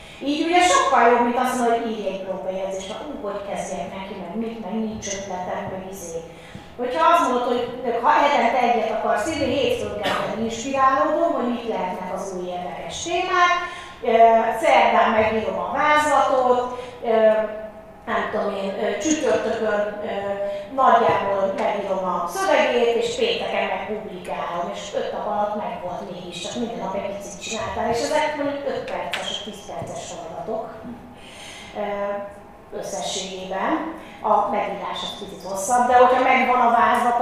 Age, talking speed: 30-49, 140 wpm